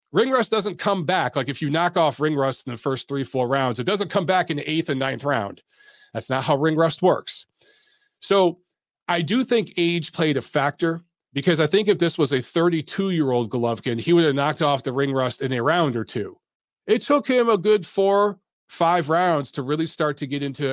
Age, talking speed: 40-59, 225 wpm